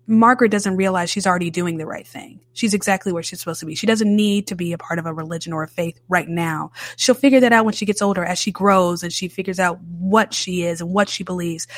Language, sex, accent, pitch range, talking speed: English, female, American, 170-215 Hz, 270 wpm